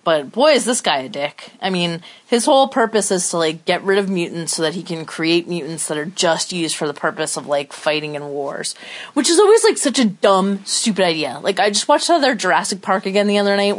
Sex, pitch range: female, 175-265 Hz